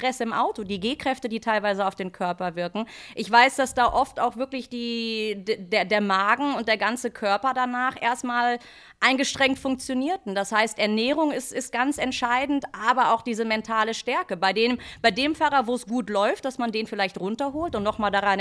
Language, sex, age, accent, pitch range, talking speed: German, female, 30-49, German, 205-255 Hz, 195 wpm